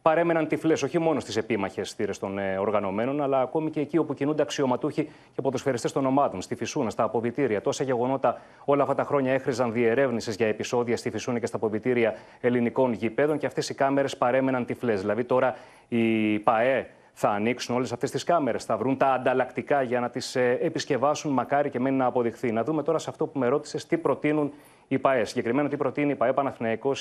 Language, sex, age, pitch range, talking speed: Greek, male, 30-49, 120-145 Hz, 200 wpm